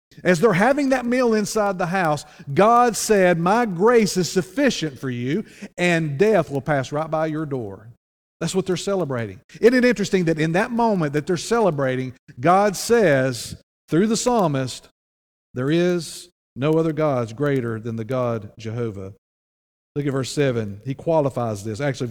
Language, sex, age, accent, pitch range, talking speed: English, male, 50-69, American, 130-190 Hz, 165 wpm